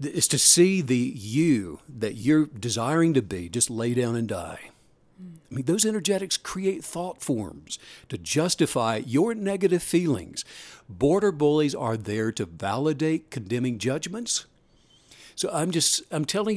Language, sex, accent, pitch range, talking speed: English, male, American, 120-170 Hz, 145 wpm